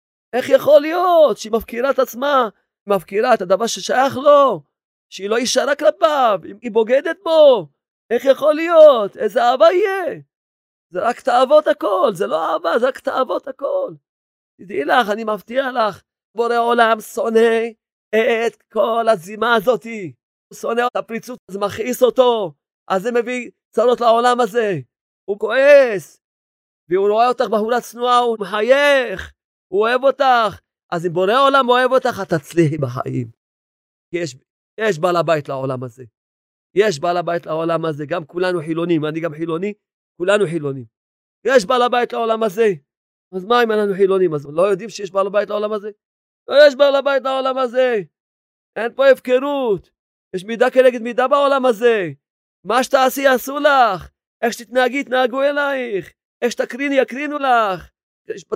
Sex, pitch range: male, 185-260 Hz